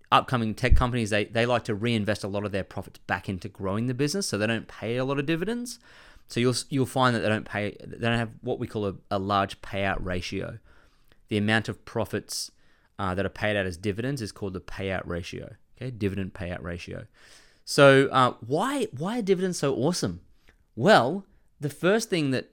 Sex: male